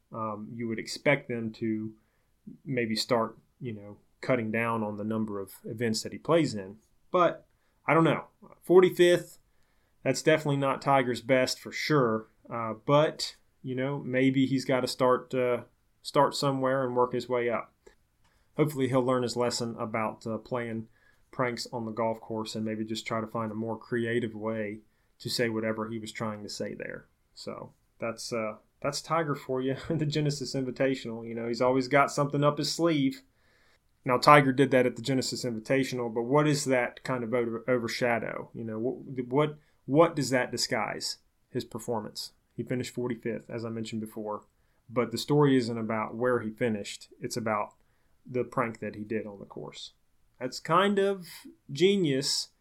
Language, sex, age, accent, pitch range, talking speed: English, male, 30-49, American, 115-140 Hz, 180 wpm